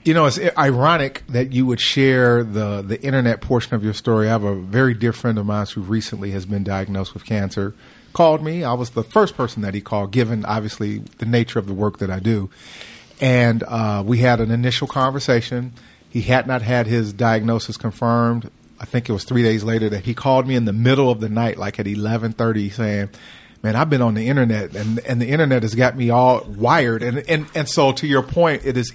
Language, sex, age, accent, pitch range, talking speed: English, male, 40-59, American, 110-135 Hz, 225 wpm